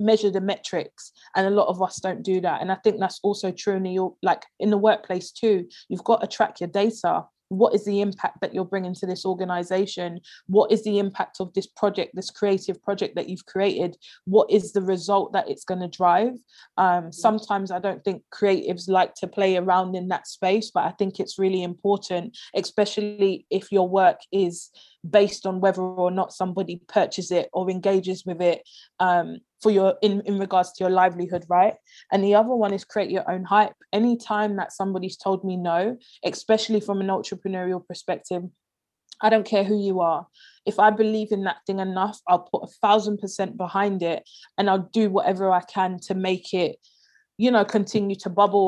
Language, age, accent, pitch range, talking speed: English, 20-39, British, 185-205 Hz, 200 wpm